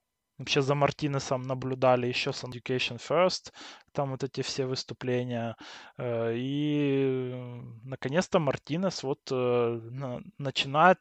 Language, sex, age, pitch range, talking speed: Russian, male, 20-39, 120-140 Hz, 100 wpm